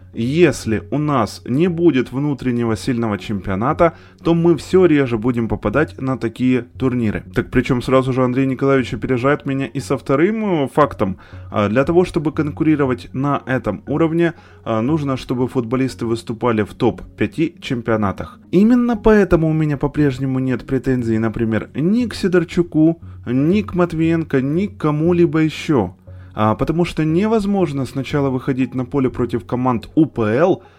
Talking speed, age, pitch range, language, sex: 140 wpm, 20-39, 115-165 Hz, Ukrainian, male